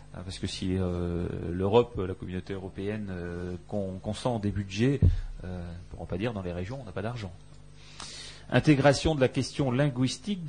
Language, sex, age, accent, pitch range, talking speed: French, male, 30-49, French, 95-135 Hz, 175 wpm